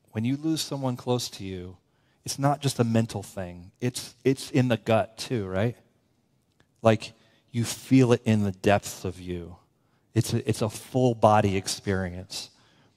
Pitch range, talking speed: 110-130 Hz, 165 wpm